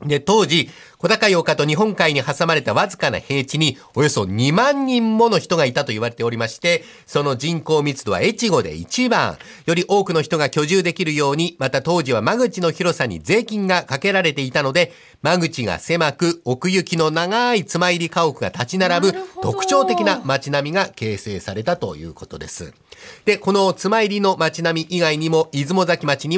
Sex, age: male, 50-69